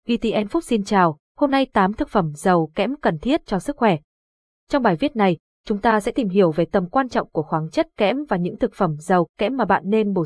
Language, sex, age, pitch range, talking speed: Vietnamese, female, 20-39, 180-230 Hz, 250 wpm